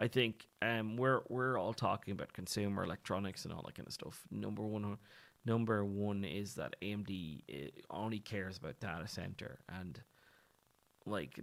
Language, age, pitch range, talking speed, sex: English, 20-39, 100-125 Hz, 155 wpm, male